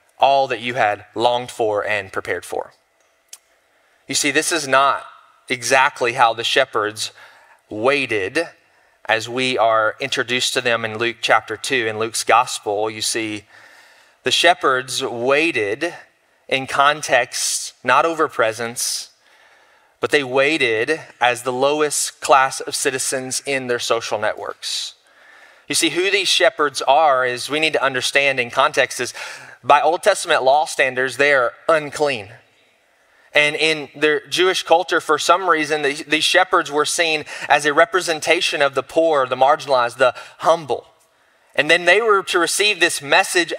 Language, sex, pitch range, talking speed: English, male, 130-190 Hz, 150 wpm